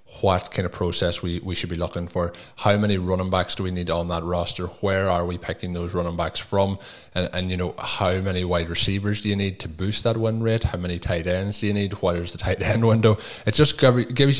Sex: male